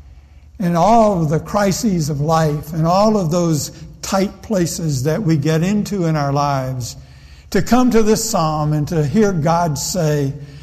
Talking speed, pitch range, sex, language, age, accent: 170 wpm, 135-175 Hz, male, English, 60-79, American